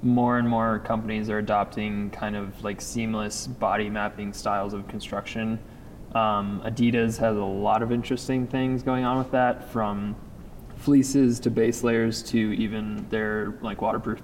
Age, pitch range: 20-39, 105-120 Hz